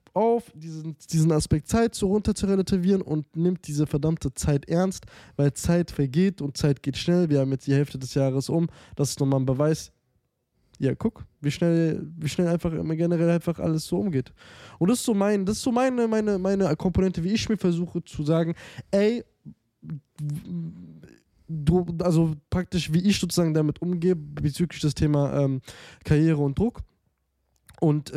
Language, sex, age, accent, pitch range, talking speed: German, male, 20-39, German, 130-180 Hz, 180 wpm